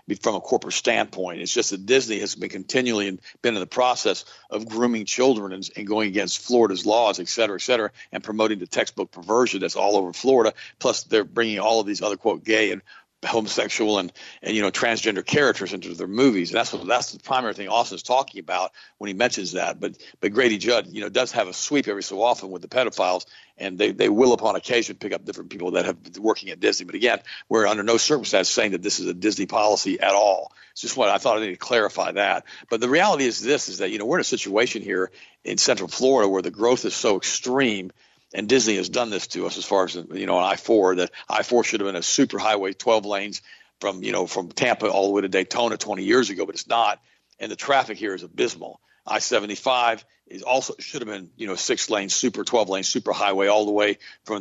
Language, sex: English, male